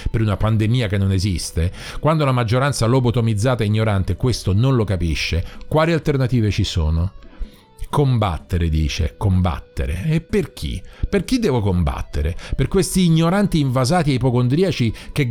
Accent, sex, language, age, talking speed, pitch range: native, male, Italian, 40-59, 145 wpm, 110-155 Hz